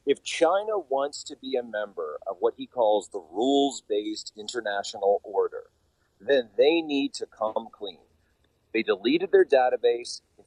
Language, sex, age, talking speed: English, male, 30-49, 150 wpm